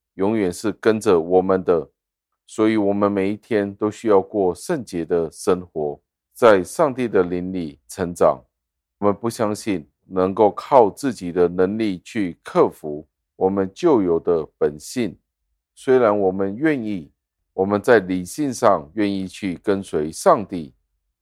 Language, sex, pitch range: Chinese, male, 80-100 Hz